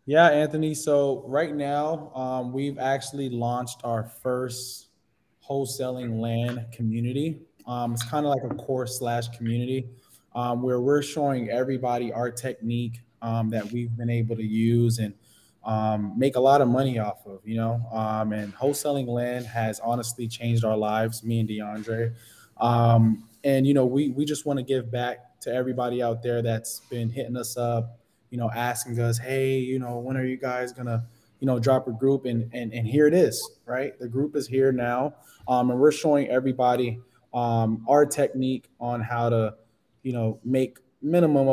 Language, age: English, 20-39